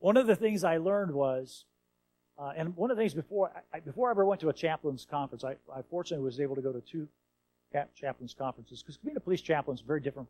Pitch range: 125-170 Hz